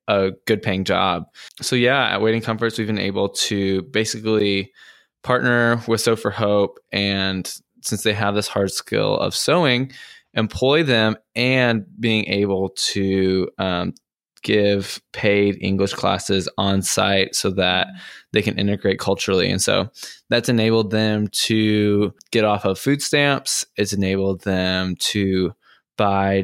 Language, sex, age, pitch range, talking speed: English, male, 20-39, 100-115 Hz, 140 wpm